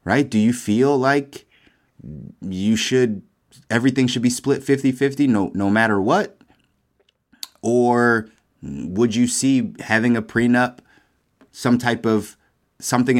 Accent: American